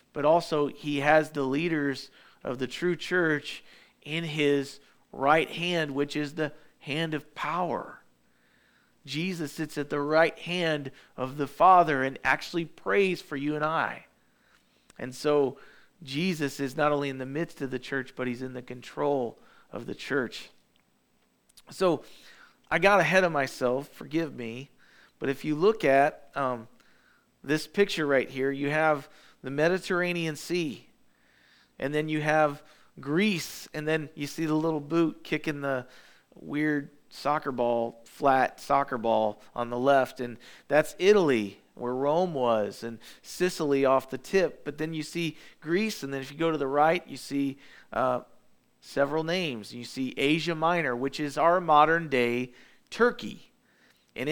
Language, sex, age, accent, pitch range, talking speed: English, male, 40-59, American, 135-160 Hz, 155 wpm